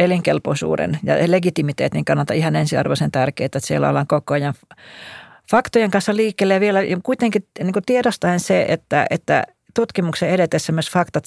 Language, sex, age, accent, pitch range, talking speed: Finnish, female, 40-59, native, 145-180 Hz, 145 wpm